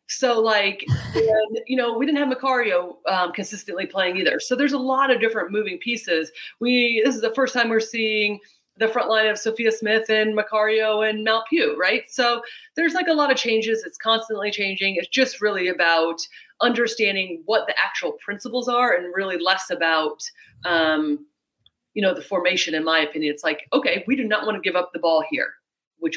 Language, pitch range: English, 180-255 Hz